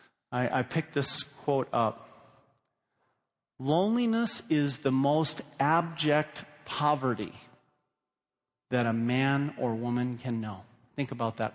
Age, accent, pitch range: 40-59, American, 125-160 Hz